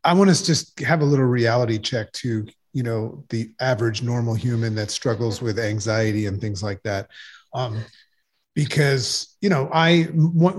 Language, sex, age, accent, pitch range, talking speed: English, male, 30-49, American, 115-150 Hz, 170 wpm